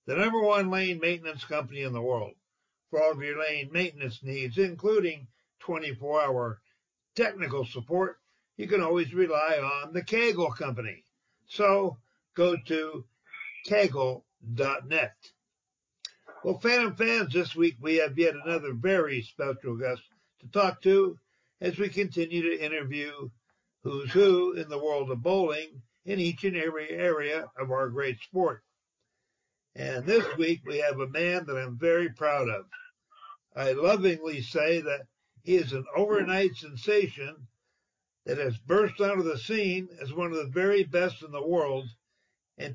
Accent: American